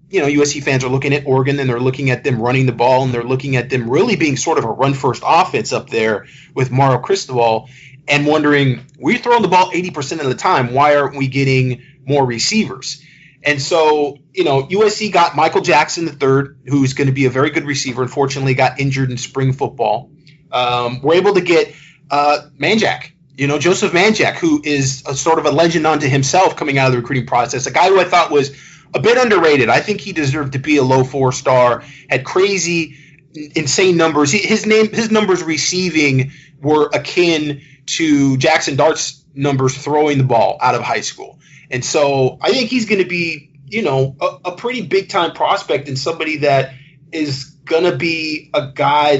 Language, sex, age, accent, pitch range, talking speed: English, male, 30-49, American, 135-170 Hz, 205 wpm